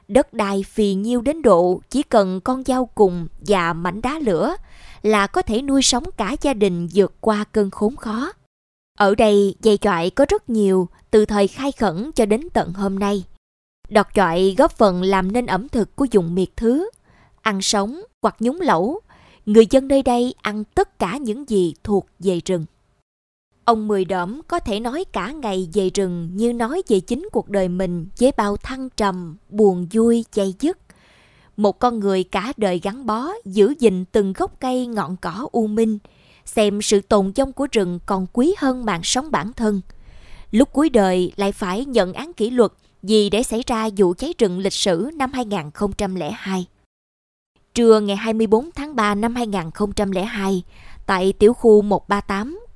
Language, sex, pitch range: Vietnamese, female, 195-245 Hz